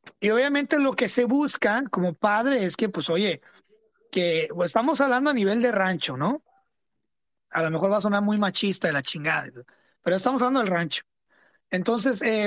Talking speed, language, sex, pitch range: 190 wpm, English, male, 185-255 Hz